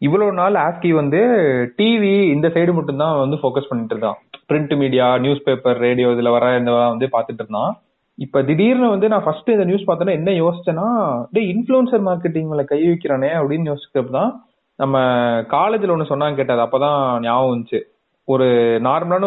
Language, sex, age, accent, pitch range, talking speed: Tamil, male, 30-49, native, 130-175 Hz, 155 wpm